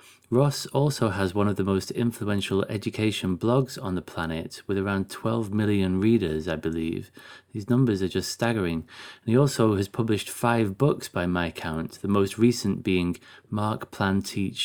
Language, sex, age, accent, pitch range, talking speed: English, male, 30-49, British, 95-115 Hz, 170 wpm